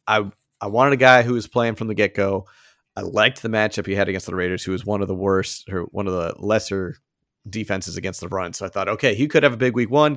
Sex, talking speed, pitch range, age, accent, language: male, 275 wpm, 100-115 Hz, 30-49, American, English